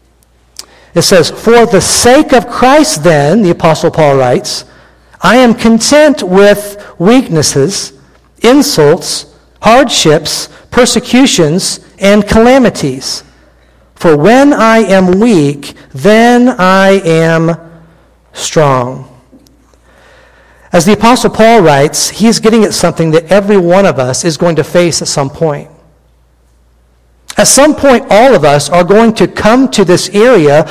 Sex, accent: male, American